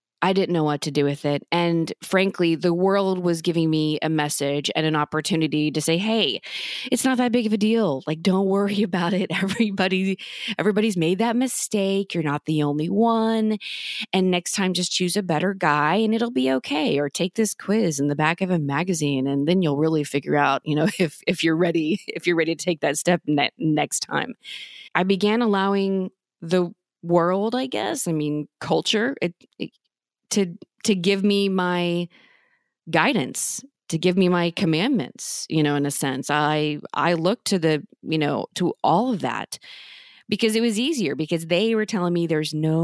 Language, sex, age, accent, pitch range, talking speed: English, female, 20-39, American, 155-195 Hz, 195 wpm